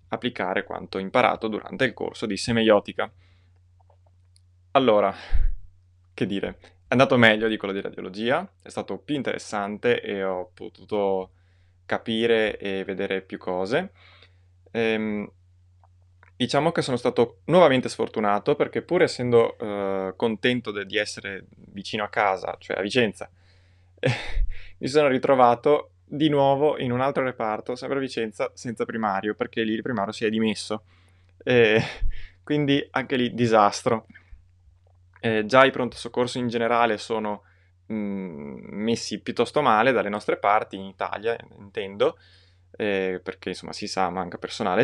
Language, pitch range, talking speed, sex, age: Italian, 90-115 Hz, 135 wpm, male, 20-39